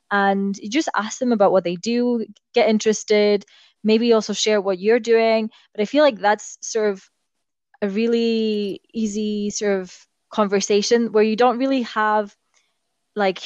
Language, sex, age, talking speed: English, female, 20-39, 160 wpm